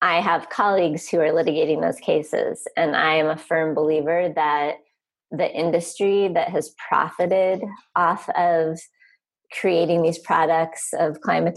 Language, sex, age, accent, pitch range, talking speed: English, female, 30-49, American, 160-195 Hz, 140 wpm